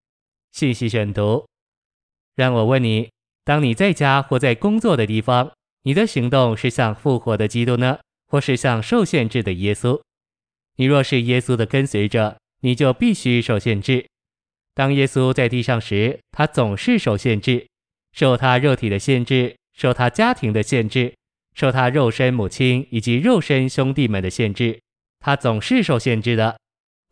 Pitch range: 115-135 Hz